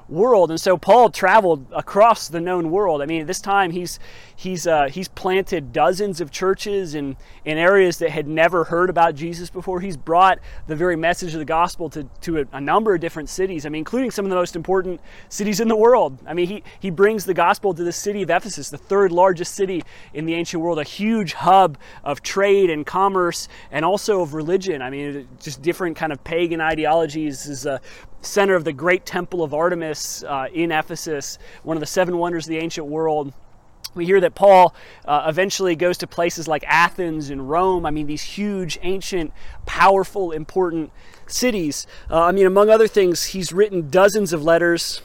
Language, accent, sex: English, American, male